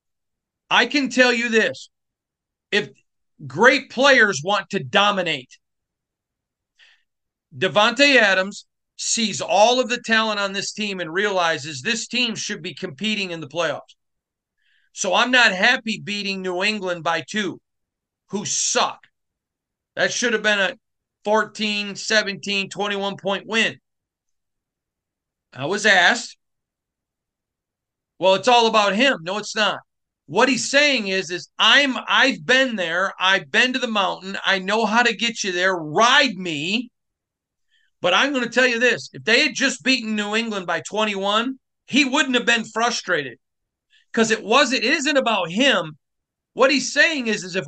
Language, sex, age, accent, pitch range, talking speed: English, male, 40-59, American, 195-250 Hz, 150 wpm